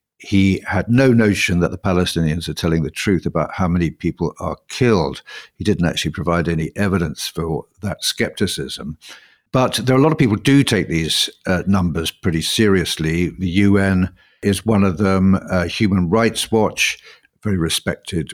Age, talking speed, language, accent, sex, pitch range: 60-79, 175 wpm, English, British, male, 90-115 Hz